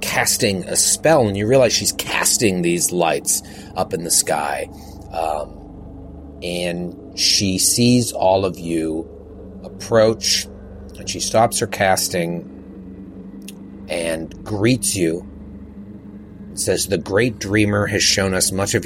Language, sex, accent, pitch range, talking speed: English, male, American, 85-100 Hz, 125 wpm